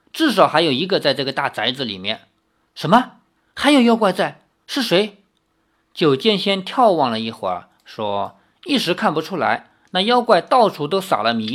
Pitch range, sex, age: 150-245 Hz, male, 50-69